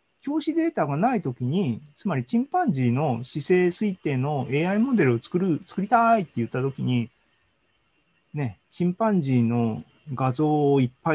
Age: 40-59